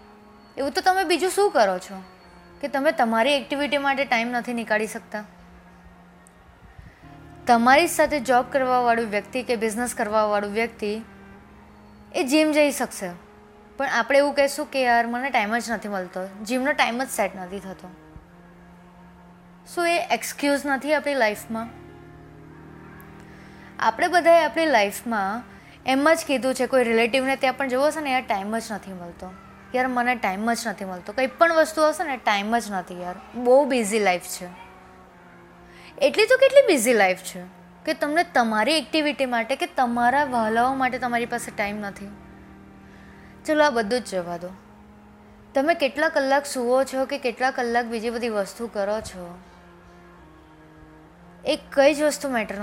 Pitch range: 190-275 Hz